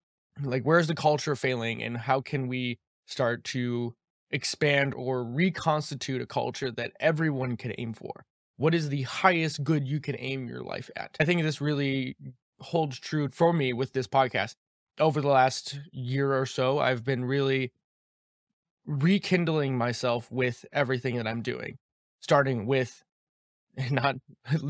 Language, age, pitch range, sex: English, 20-39, 125-150 Hz, male